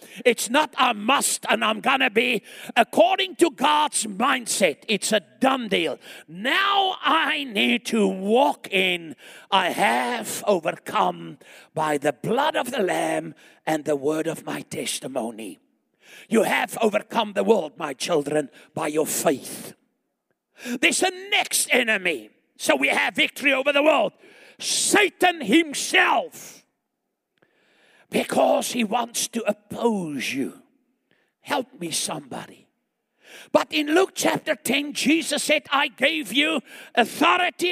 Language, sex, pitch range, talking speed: English, male, 205-310 Hz, 130 wpm